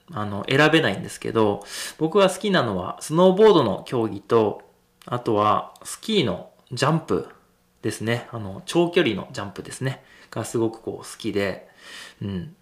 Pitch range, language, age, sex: 105-160 Hz, Japanese, 20-39, male